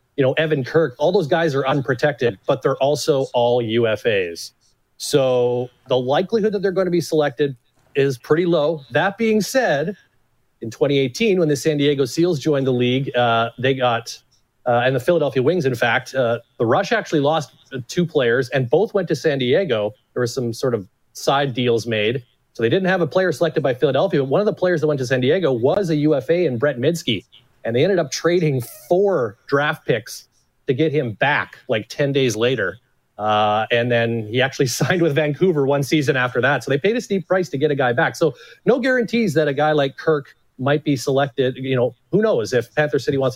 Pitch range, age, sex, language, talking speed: 125-165 Hz, 30-49, male, English, 210 wpm